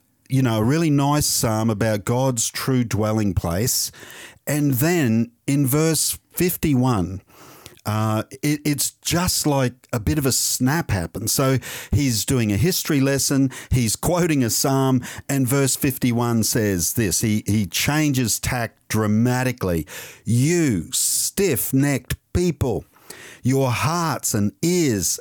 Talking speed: 130 wpm